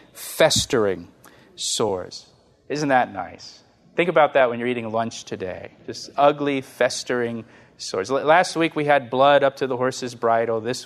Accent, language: American, English